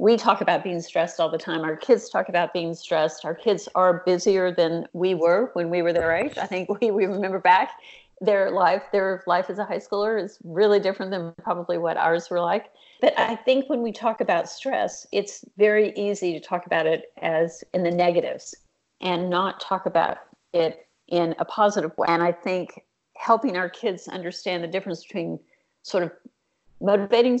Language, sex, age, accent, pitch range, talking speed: English, female, 50-69, American, 170-210 Hz, 195 wpm